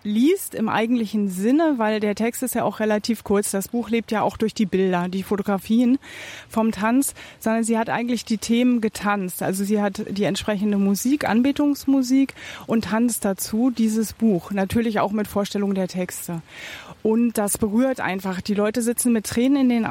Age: 20-39